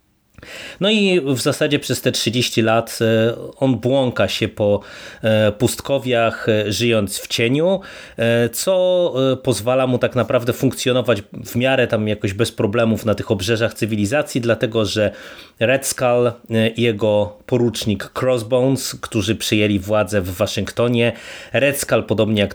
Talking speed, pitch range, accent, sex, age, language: 130 wpm, 105-125 Hz, native, male, 30-49, Polish